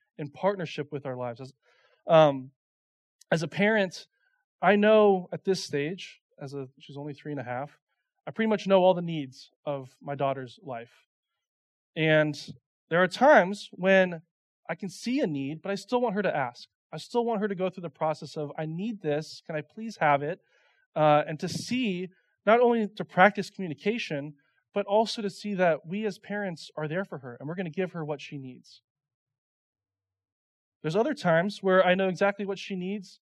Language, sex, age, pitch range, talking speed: English, male, 20-39, 145-200 Hz, 195 wpm